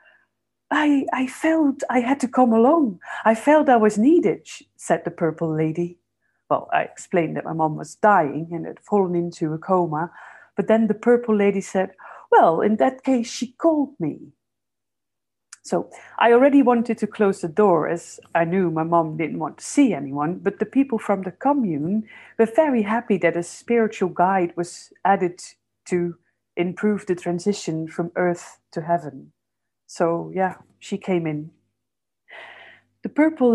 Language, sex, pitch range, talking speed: English, female, 175-230 Hz, 165 wpm